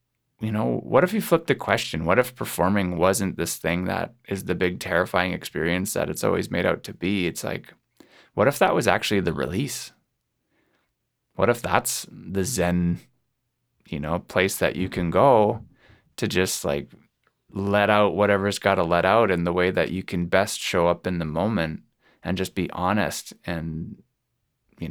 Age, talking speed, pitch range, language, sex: 20-39, 180 wpm, 90-110 Hz, English, male